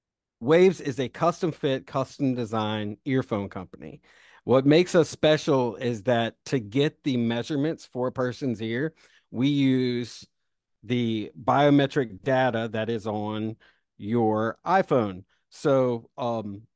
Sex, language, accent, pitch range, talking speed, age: male, English, American, 115-145 Hz, 125 wpm, 40-59